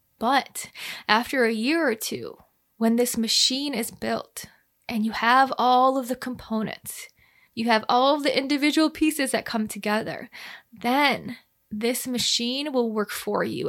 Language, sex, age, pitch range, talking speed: English, female, 20-39, 220-255 Hz, 155 wpm